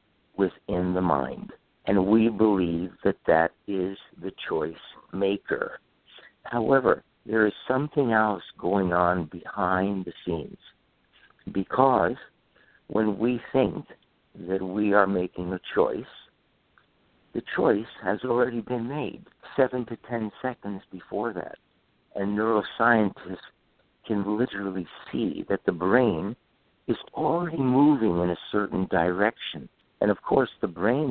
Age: 60-79